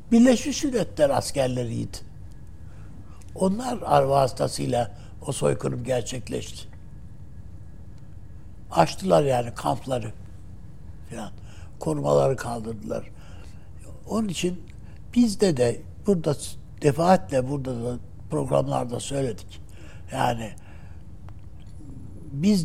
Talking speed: 70 wpm